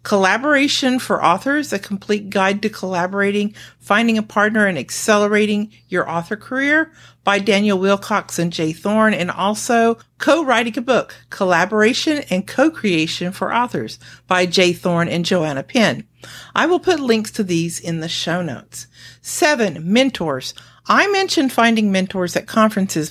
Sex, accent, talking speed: female, American, 145 wpm